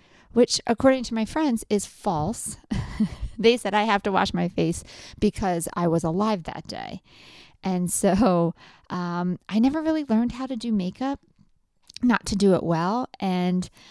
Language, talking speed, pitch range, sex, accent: English, 165 wpm, 180-230 Hz, female, American